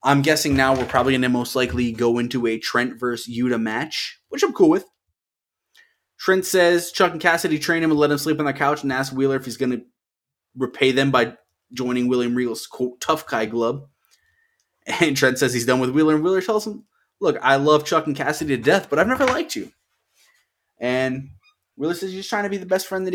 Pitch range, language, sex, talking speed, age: 120-150 Hz, English, male, 220 wpm, 20-39